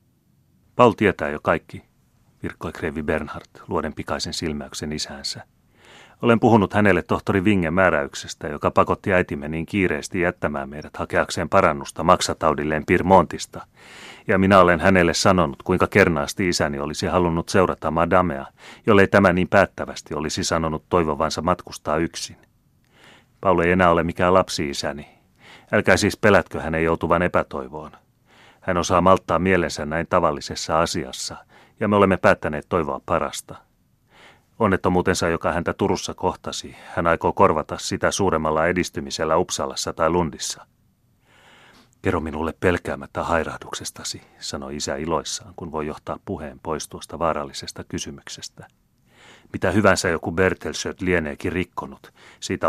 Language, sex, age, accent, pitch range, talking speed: Finnish, male, 30-49, native, 80-95 Hz, 125 wpm